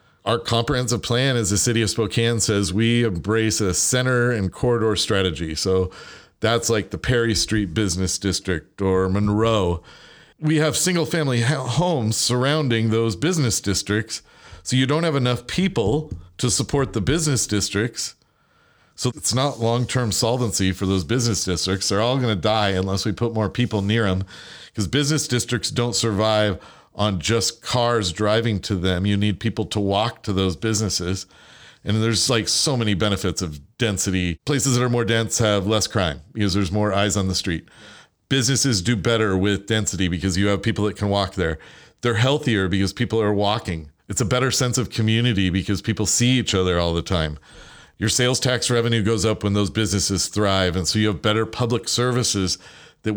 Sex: male